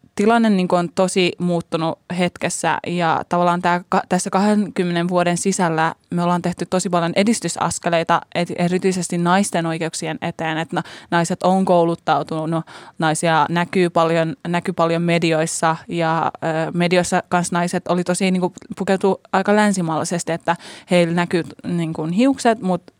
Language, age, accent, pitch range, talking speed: Finnish, 20-39, native, 165-180 Hz, 115 wpm